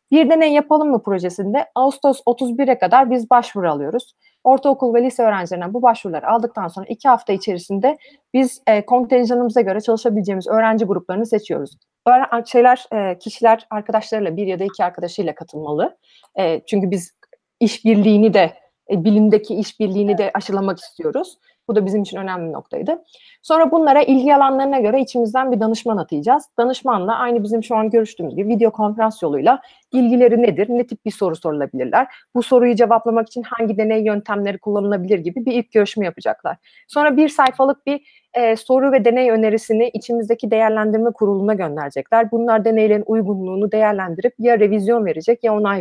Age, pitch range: 30-49, 205-250 Hz